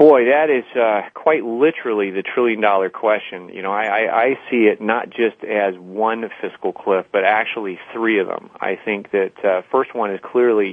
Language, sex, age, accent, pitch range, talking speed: English, male, 30-49, American, 95-125 Hz, 200 wpm